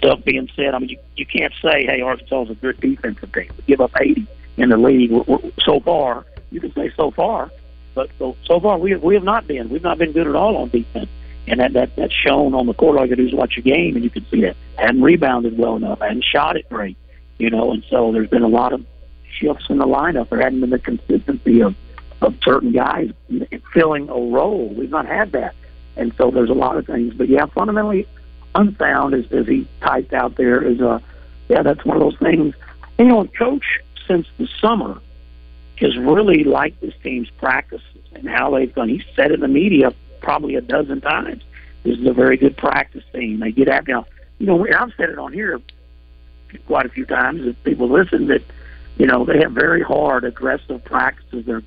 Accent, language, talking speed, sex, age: American, English, 225 wpm, male, 50-69